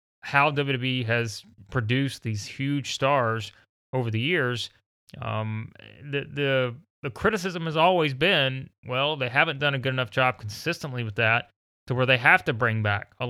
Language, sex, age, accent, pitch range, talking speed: English, male, 30-49, American, 110-135 Hz, 165 wpm